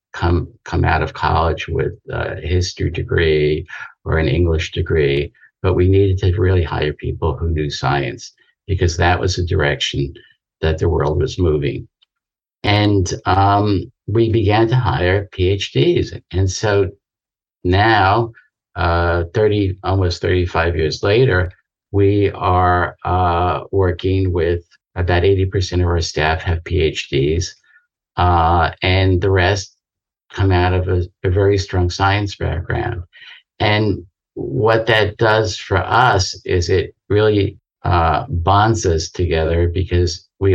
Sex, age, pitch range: male, 50-69, 85-100 Hz